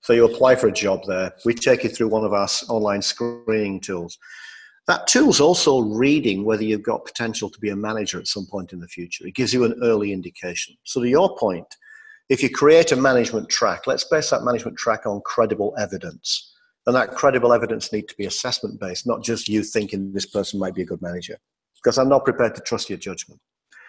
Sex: male